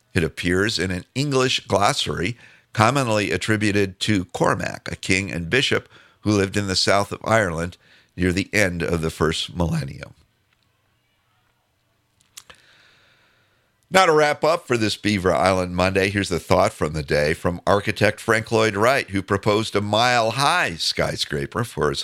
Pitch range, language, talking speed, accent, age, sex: 90-120 Hz, English, 150 wpm, American, 50-69, male